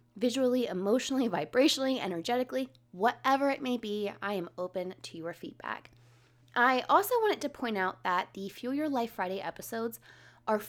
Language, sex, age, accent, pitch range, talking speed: English, female, 20-39, American, 175-270 Hz, 155 wpm